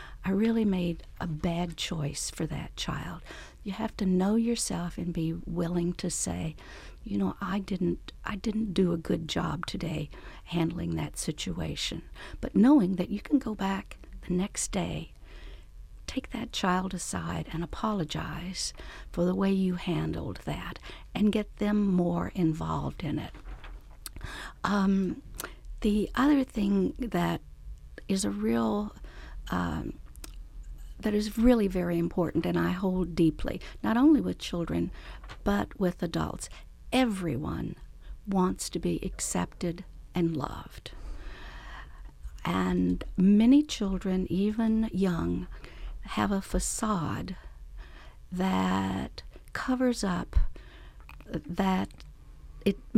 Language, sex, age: English, female, 60-79